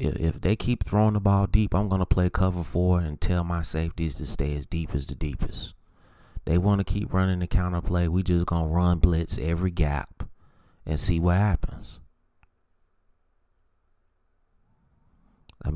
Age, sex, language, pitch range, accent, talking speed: 30-49, male, English, 80-90 Hz, American, 170 wpm